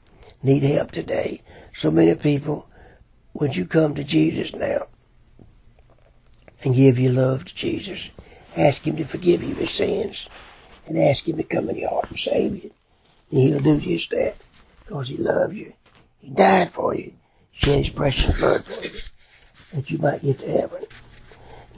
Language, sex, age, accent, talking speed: English, male, 60-79, American, 170 wpm